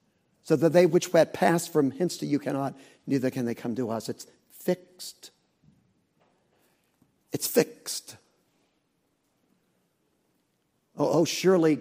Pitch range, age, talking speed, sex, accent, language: 140-175 Hz, 50-69, 120 wpm, male, American, English